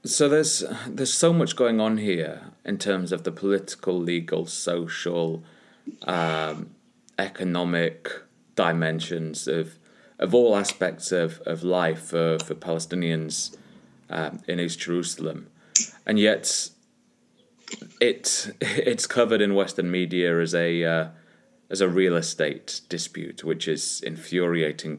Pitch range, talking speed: 80-100 Hz, 120 wpm